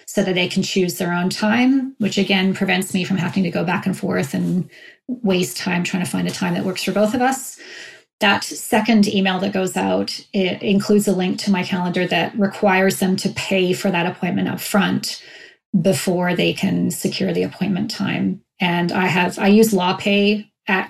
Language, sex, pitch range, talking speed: English, female, 180-210 Hz, 200 wpm